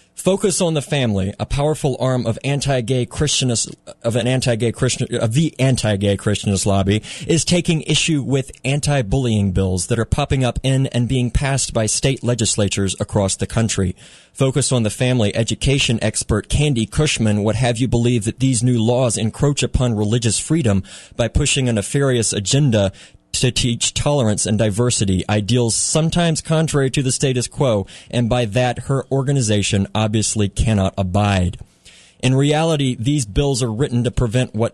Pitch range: 110-135 Hz